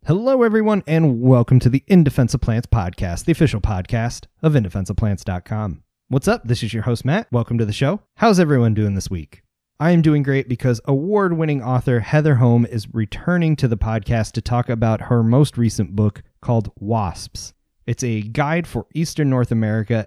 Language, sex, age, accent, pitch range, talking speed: English, male, 30-49, American, 105-130 Hz, 185 wpm